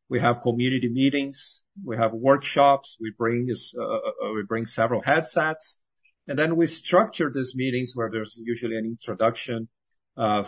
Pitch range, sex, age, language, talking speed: 110-135 Hz, male, 50-69, English, 155 wpm